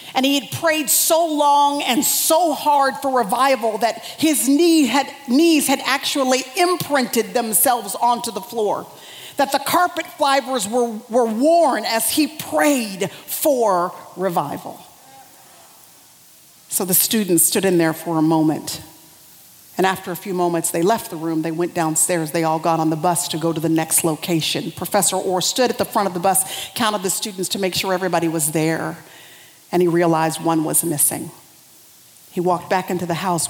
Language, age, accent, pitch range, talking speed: English, 40-59, American, 165-245 Hz, 170 wpm